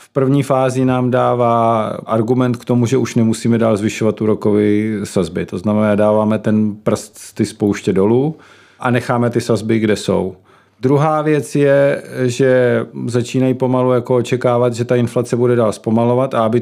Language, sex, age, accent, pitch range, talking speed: Czech, male, 40-59, native, 110-125 Hz, 160 wpm